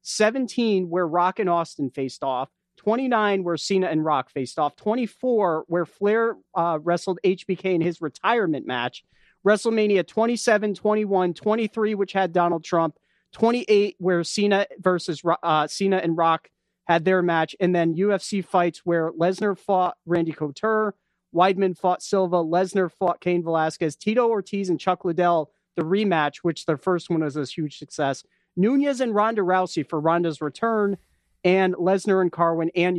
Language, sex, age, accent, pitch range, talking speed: English, male, 40-59, American, 160-195 Hz, 155 wpm